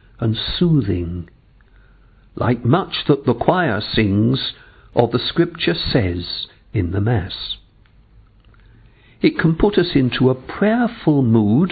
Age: 60-79